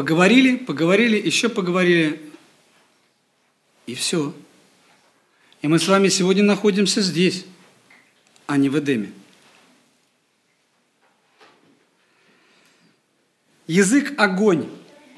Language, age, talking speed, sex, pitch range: Russian, 50-69, 75 wpm, male, 175-235 Hz